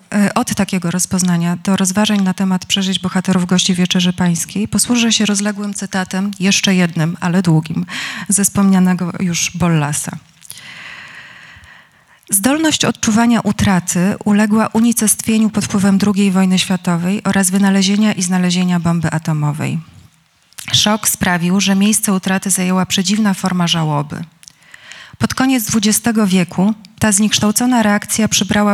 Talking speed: 120 wpm